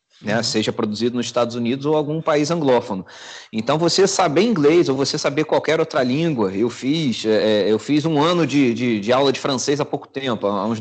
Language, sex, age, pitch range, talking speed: Portuguese, male, 30-49, 130-185 Hz, 195 wpm